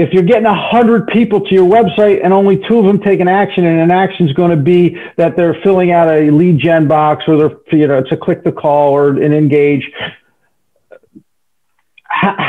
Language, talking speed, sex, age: English, 215 wpm, male, 50-69